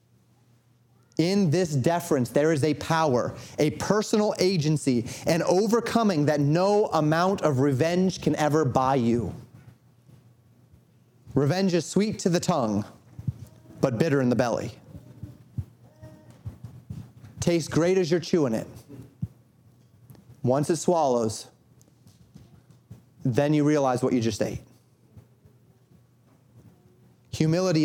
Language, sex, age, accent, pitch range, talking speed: English, male, 30-49, American, 120-155 Hz, 105 wpm